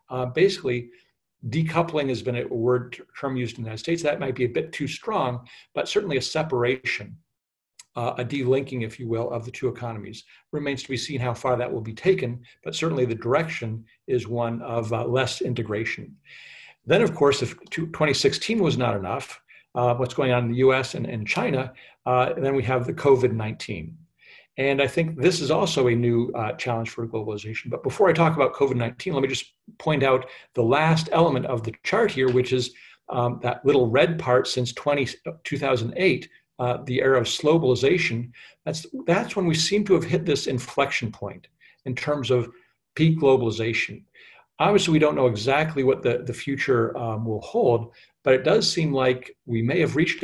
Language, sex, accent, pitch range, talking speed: English, male, American, 120-150 Hz, 190 wpm